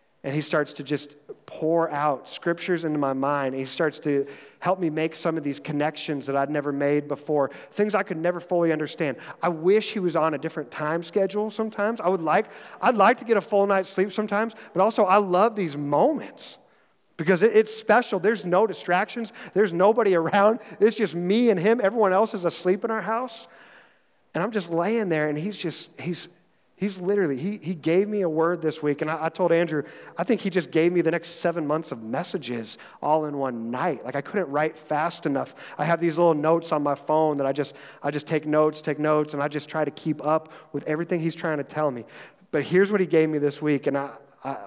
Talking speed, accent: 230 wpm, American